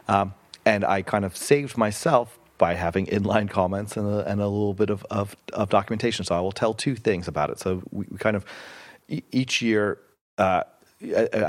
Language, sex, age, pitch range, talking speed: English, male, 30-49, 85-105 Hz, 200 wpm